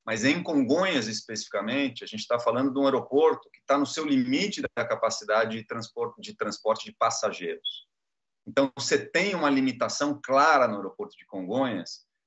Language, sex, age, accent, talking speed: Portuguese, male, 30-49, Brazilian, 165 wpm